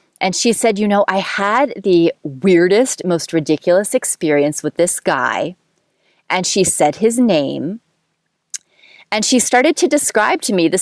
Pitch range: 155-205 Hz